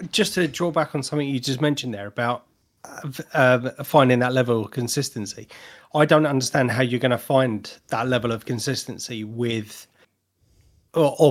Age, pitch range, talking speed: 30-49, 120-145 Hz, 165 wpm